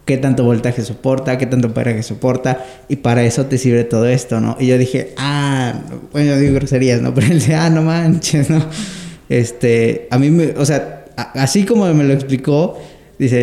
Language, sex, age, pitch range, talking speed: Spanish, male, 20-39, 125-145 Hz, 190 wpm